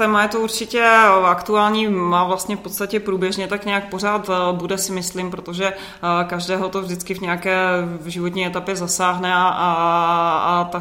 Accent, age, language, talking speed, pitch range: native, 20-39, Czech, 155 wpm, 175-185 Hz